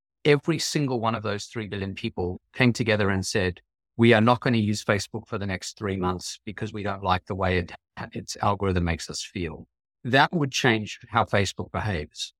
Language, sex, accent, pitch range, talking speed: English, male, British, 95-120 Hz, 200 wpm